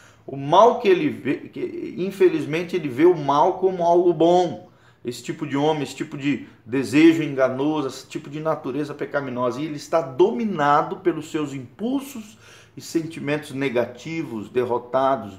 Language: Portuguese